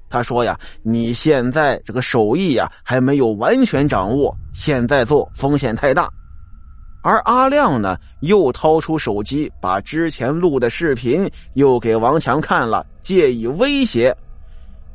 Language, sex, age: Chinese, male, 20-39